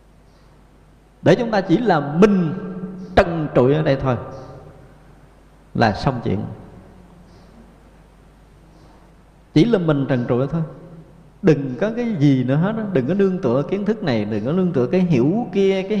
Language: Vietnamese